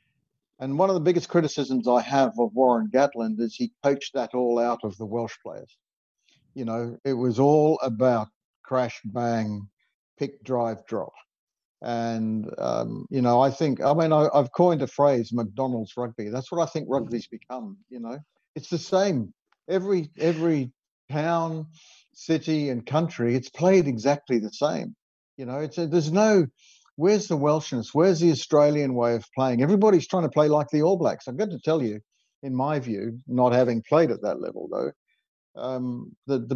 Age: 60-79